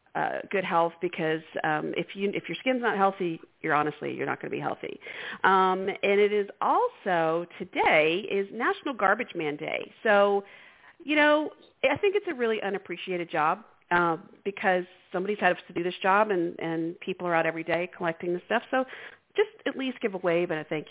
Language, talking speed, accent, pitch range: English, 200 wpm, American, 175-235 Hz